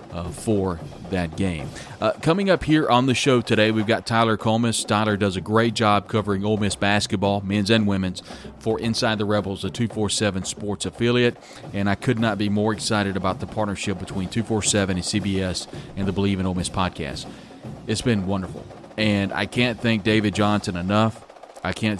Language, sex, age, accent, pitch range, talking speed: English, male, 40-59, American, 100-115 Hz, 190 wpm